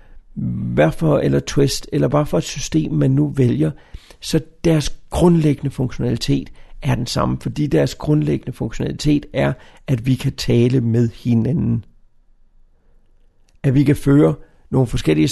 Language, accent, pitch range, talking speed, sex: Danish, native, 110-155 Hz, 140 wpm, male